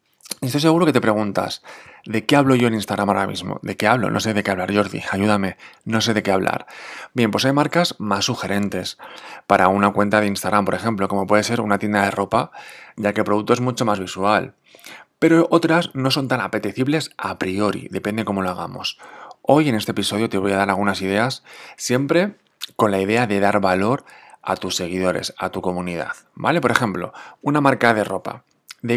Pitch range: 100-125 Hz